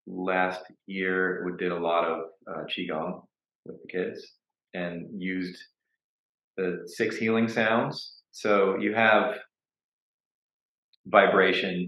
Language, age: English, 30-49